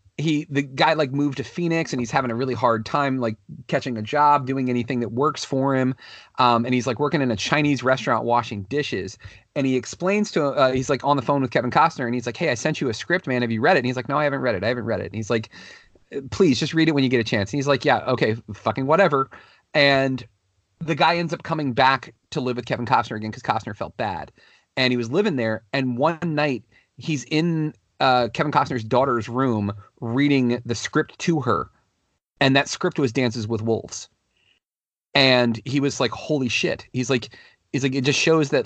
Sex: male